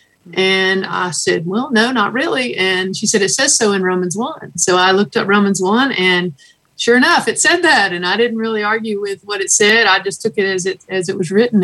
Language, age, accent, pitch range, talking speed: English, 50-69, American, 175-200 Hz, 240 wpm